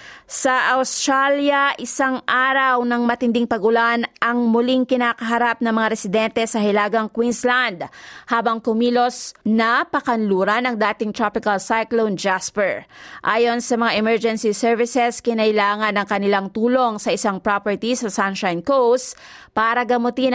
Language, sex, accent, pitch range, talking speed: Filipino, female, native, 215-250 Hz, 125 wpm